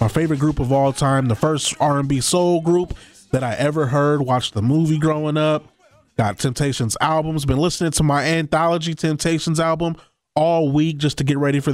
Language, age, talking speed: English, 30-49, 190 wpm